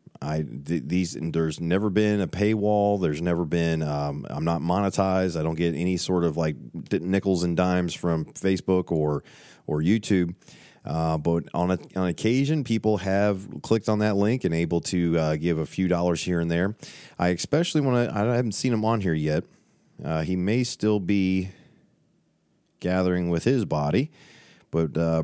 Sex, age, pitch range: male, 30-49, 80-100 Hz